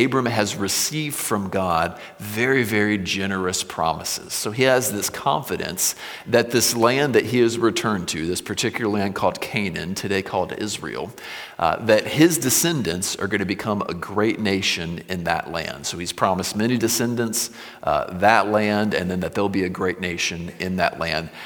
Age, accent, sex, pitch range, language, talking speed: 40-59, American, male, 95-120 Hz, English, 175 wpm